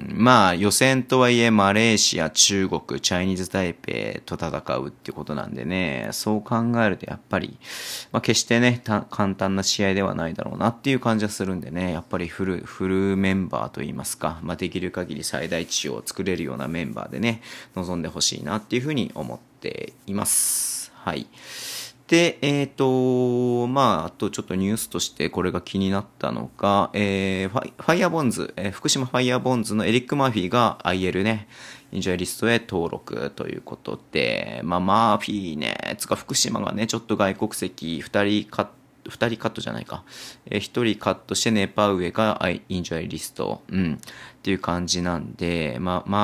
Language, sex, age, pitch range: Japanese, male, 30-49, 90-115 Hz